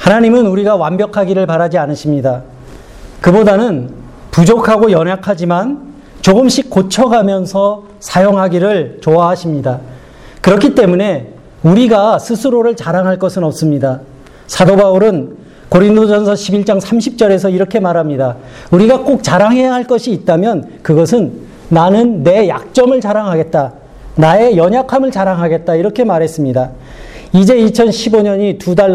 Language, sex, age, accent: Korean, male, 40-59, native